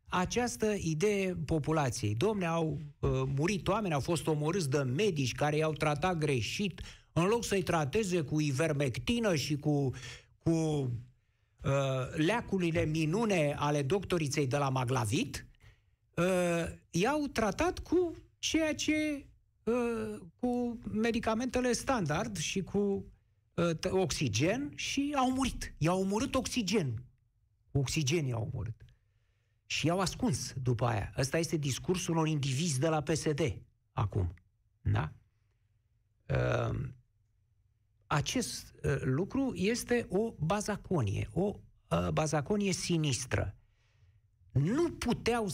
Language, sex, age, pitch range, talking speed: Romanian, male, 60-79, 125-195 Hz, 110 wpm